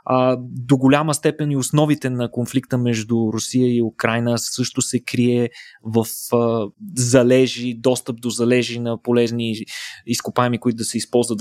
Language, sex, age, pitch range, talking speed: Bulgarian, male, 20-39, 115-140 Hz, 135 wpm